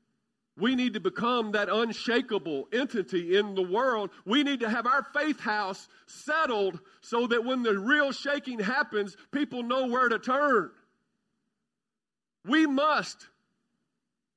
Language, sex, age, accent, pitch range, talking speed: English, male, 50-69, American, 165-235 Hz, 135 wpm